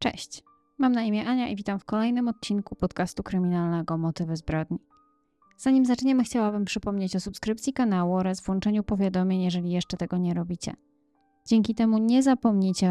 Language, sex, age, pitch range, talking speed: Polish, female, 20-39, 175-225 Hz, 155 wpm